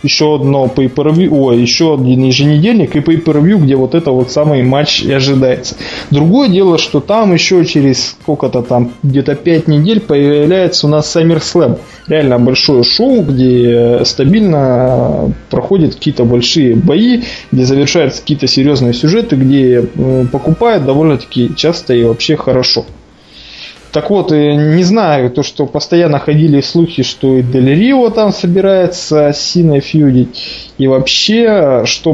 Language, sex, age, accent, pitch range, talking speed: Russian, male, 20-39, native, 130-165 Hz, 135 wpm